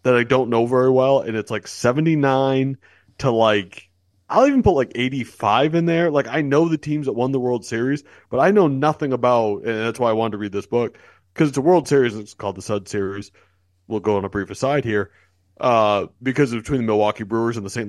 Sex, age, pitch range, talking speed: male, 30-49, 100-130 Hz, 235 wpm